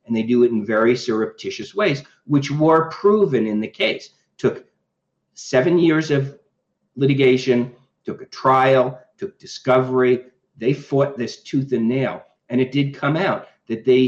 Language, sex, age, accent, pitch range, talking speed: English, male, 50-69, American, 110-135 Hz, 160 wpm